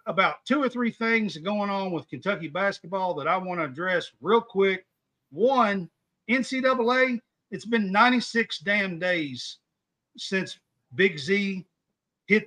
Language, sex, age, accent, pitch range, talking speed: English, male, 50-69, American, 185-250 Hz, 135 wpm